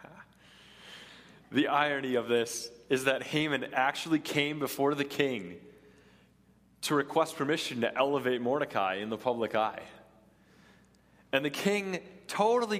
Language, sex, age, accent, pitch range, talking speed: English, male, 20-39, American, 115-145 Hz, 120 wpm